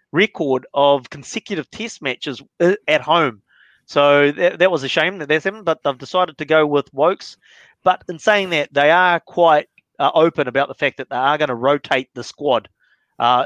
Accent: Australian